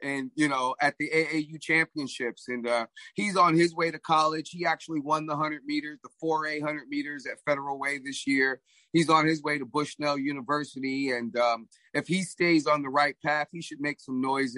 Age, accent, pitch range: 30-49, American, 140-160 Hz